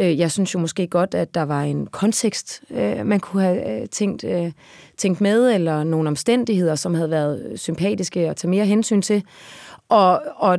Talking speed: 170 wpm